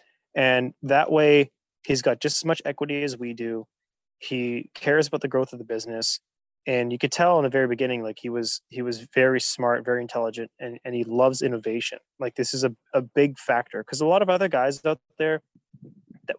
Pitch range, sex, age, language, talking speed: 120-140 Hz, male, 20-39, English, 210 wpm